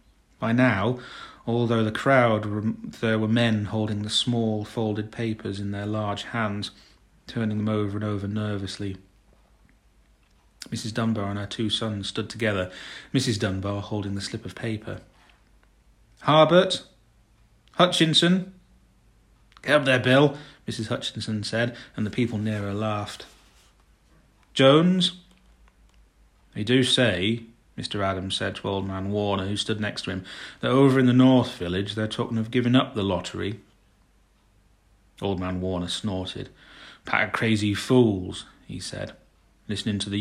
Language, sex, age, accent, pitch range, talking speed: English, male, 30-49, British, 100-120 Hz, 140 wpm